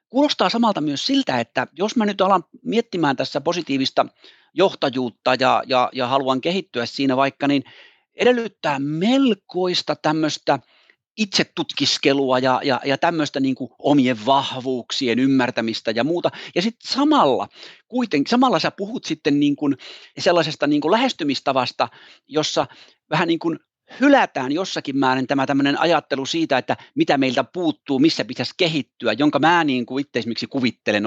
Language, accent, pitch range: Finnish, native, 135-215 Hz